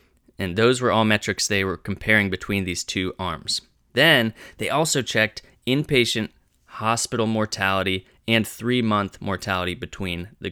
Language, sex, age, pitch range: English, male, 20-39, 90-115 Hz